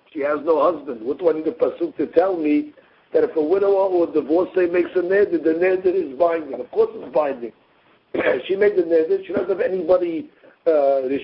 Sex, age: male, 60-79